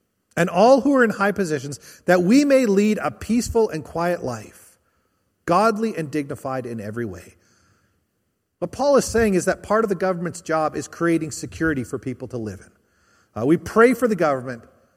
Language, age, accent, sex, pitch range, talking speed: English, 40-59, American, male, 130-195 Hz, 190 wpm